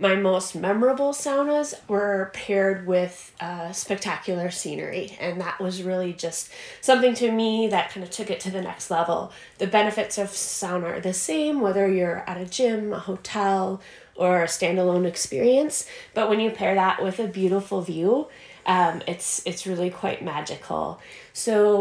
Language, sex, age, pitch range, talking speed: English, female, 20-39, 175-215 Hz, 170 wpm